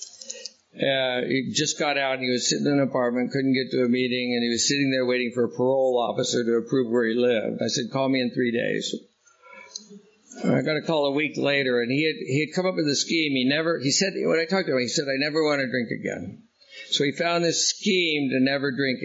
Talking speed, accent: 255 wpm, American